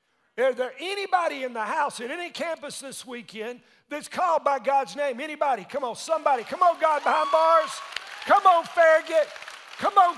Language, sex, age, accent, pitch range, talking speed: English, male, 50-69, American, 190-275 Hz, 175 wpm